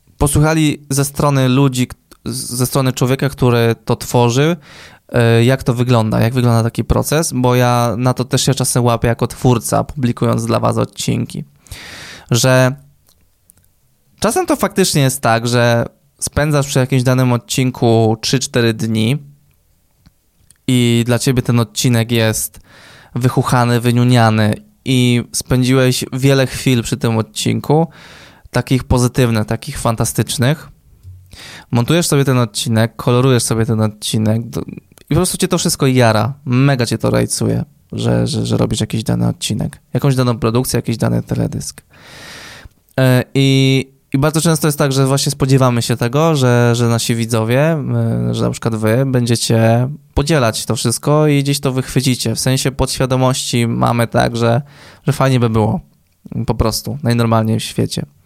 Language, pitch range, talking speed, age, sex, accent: Polish, 115-135 Hz, 140 wpm, 20-39, male, native